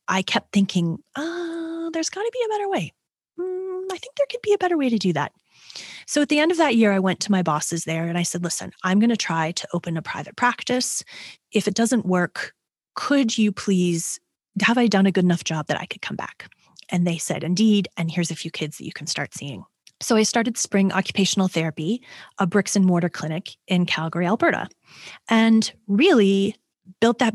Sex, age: female, 30-49